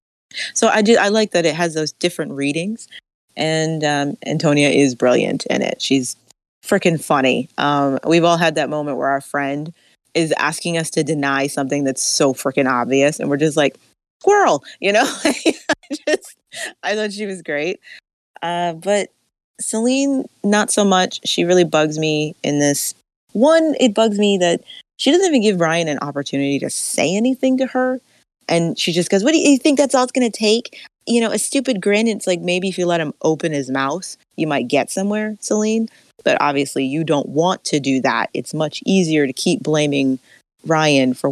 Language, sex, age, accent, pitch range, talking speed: English, female, 20-39, American, 145-215 Hz, 195 wpm